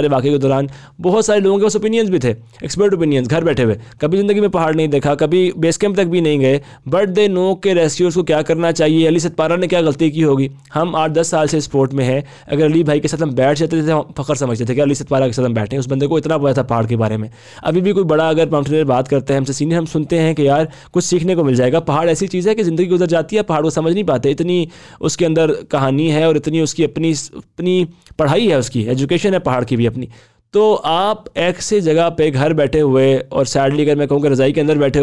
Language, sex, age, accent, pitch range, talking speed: English, male, 20-39, Indian, 140-175 Hz, 130 wpm